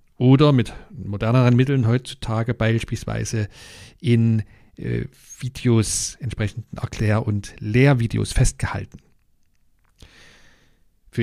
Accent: German